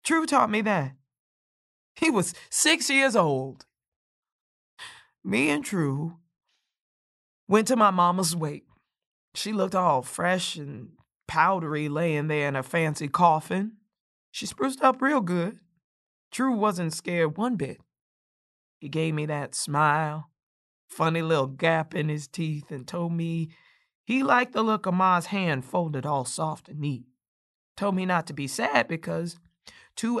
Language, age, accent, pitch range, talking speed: English, 20-39, American, 150-210 Hz, 145 wpm